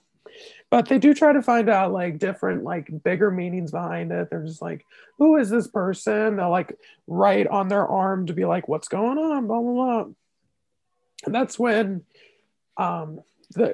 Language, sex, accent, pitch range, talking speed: English, male, American, 180-255 Hz, 175 wpm